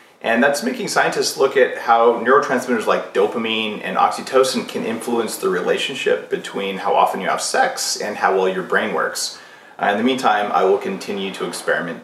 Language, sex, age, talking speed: English, male, 30-49, 185 wpm